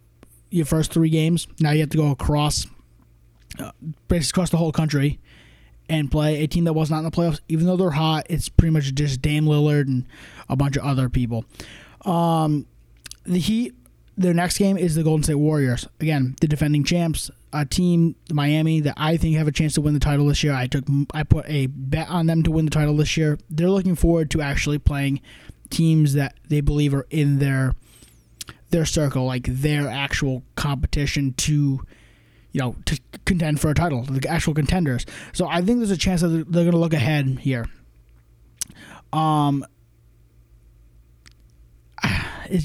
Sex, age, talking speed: male, 20-39, 185 wpm